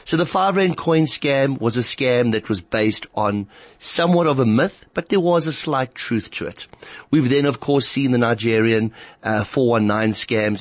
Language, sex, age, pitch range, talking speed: English, male, 30-49, 110-135 Hz, 190 wpm